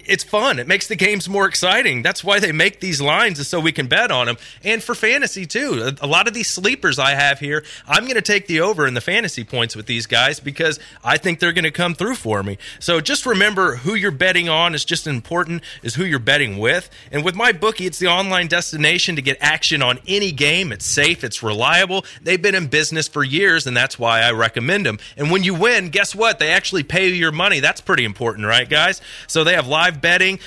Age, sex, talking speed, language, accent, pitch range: 30-49, male, 240 wpm, English, American, 135-180 Hz